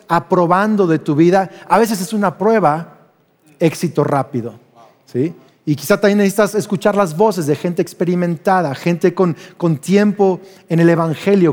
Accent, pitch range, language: Mexican, 170-240 Hz, Spanish